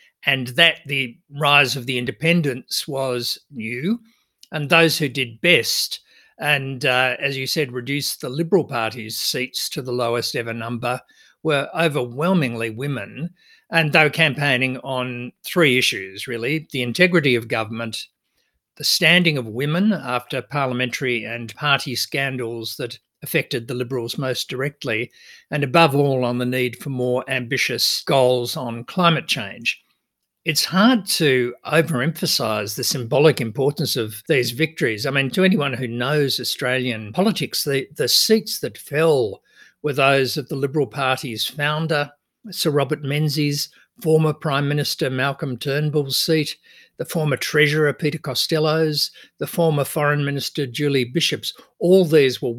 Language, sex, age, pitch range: English, male, 50-69, 125-155 Hz